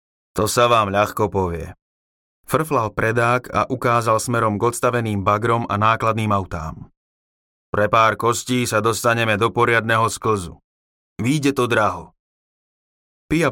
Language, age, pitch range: Slovak, 30-49, 105-125 Hz